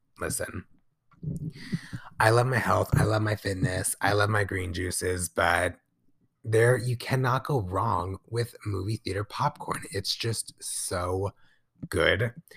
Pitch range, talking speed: 95-125 Hz, 135 wpm